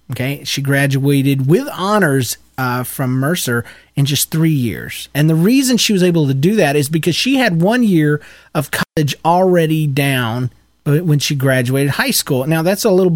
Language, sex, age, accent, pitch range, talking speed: English, male, 30-49, American, 130-165 Hz, 180 wpm